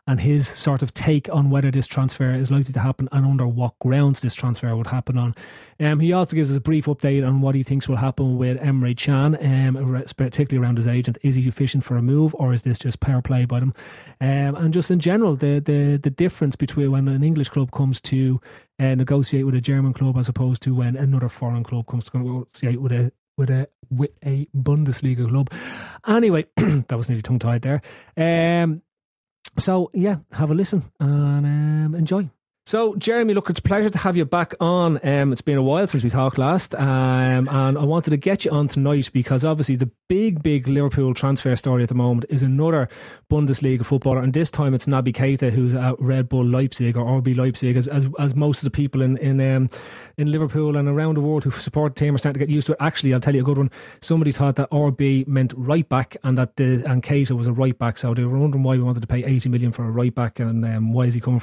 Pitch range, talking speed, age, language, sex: 125-145 Hz, 235 wpm, 30-49, English, male